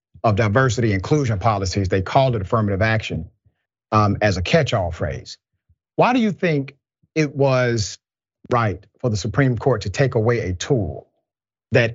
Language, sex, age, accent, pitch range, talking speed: English, male, 40-59, American, 105-140 Hz, 160 wpm